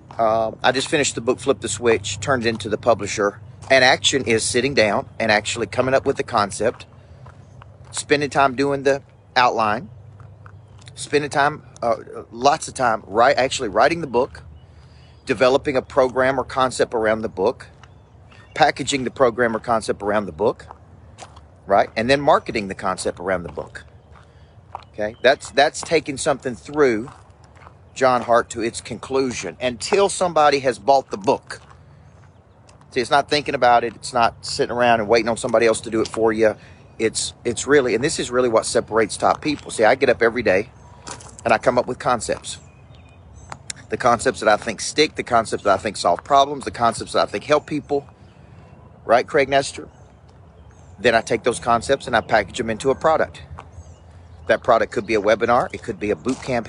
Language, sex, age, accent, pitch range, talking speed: English, male, 40-59, American, 110-135 Hz, 185 wpm